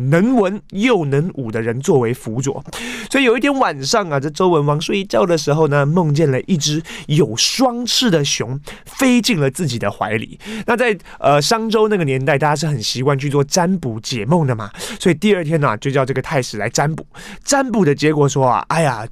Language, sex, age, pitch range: Chinese, male, 20-39, 135-195 Hz